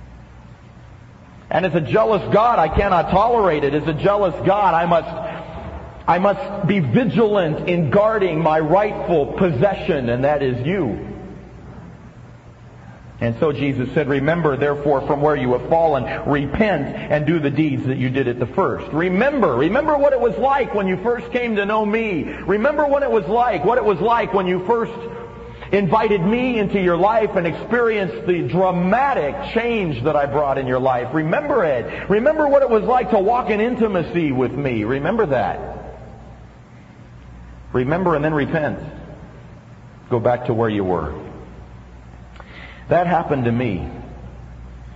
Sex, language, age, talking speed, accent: male, English, 50-69, 160 wpm, American